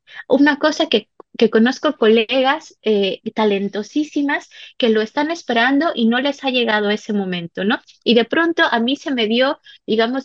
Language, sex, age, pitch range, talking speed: Spanish, female, 20-39, 210-280 Hz, 170 wpm